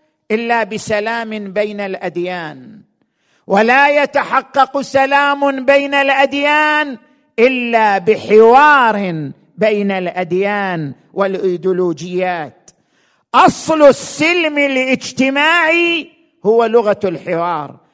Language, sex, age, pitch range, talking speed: Arabic, male, 50-69, 205-265 Hz, 65 wpm